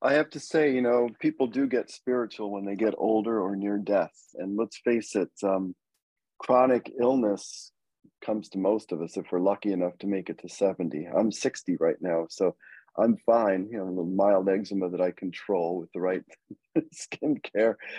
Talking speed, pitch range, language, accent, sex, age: 195 wpm, 90-115 Hz, English, American, male, 40-59